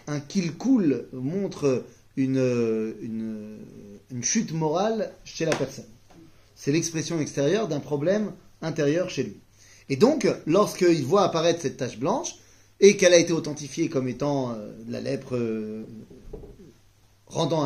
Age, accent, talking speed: 30-49, French, 130 wpm